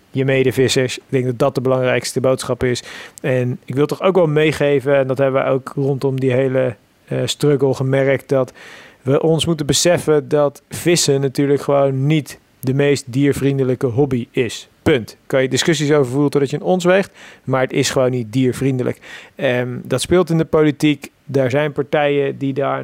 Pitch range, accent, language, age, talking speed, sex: 130-155 Hz, Dutch, Dutch, 40-59, 185 wpm, male